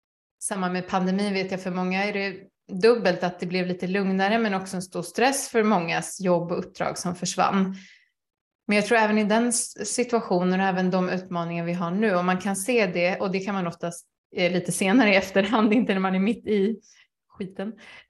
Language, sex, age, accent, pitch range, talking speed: Swedish, female, 20-39, native, 185-225 Hz, 205 wpm